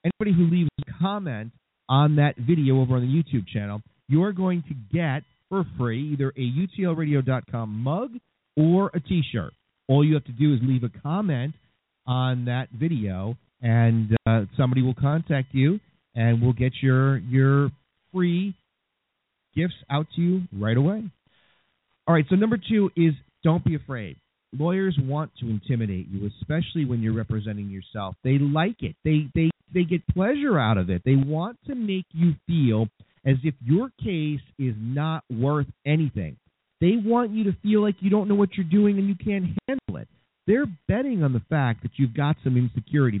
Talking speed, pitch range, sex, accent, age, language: 175 wpm, 125-185 Hz, male, American, 40-59, English